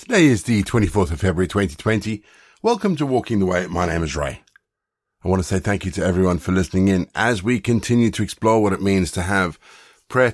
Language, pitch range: English, 80-105 Hz